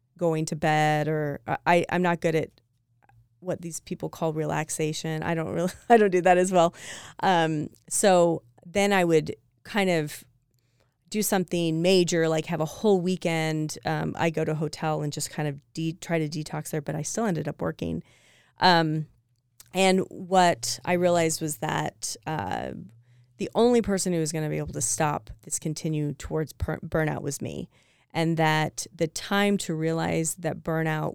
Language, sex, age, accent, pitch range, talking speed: English, female, 30-49, American, 150-175 Hz, 180 wpm